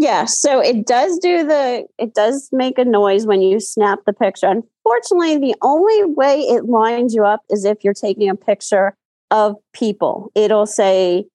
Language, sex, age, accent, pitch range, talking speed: English, female, 30-49, American, 190-245 Hz, 180 wpm